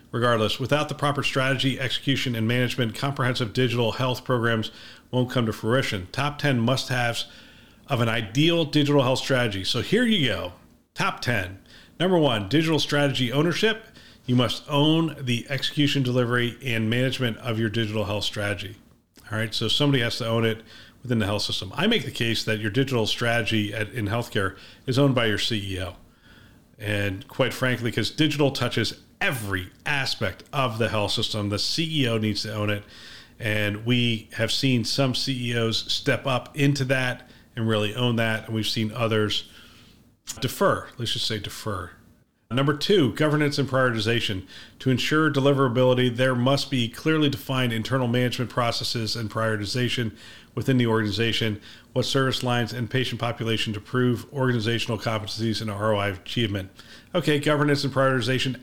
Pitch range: 110-135 Hz